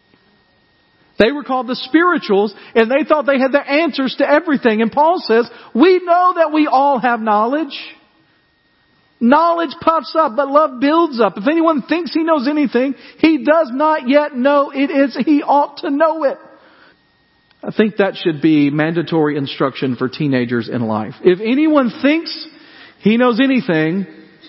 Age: 40-59